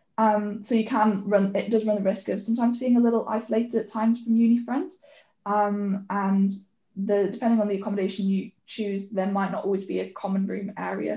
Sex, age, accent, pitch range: female, 10-29, British, 195-225 Hz